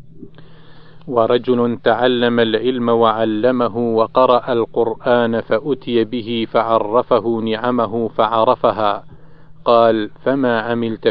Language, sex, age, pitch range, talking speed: Arabic, male, 40-59, 110-125 Hz, 75 wpm